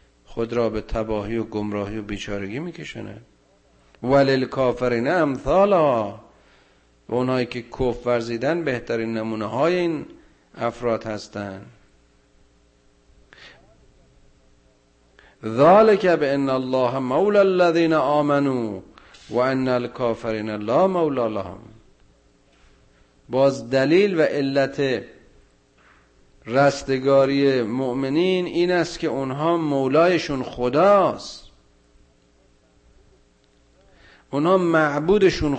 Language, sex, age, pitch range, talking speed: Persian, male, 50-69, 110-150 Hz, 80 wpm